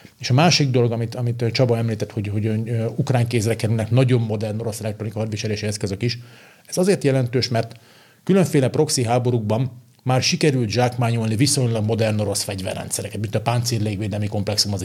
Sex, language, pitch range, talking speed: male, Hungarian, 105-130 Hz, 170 wpm